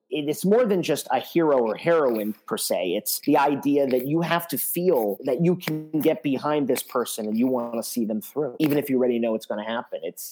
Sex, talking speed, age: male, 245 wpm, 40-59